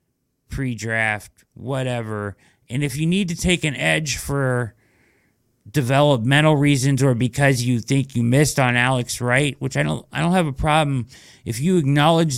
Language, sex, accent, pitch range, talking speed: English, male, American, 115-135 Hz, 160 wpm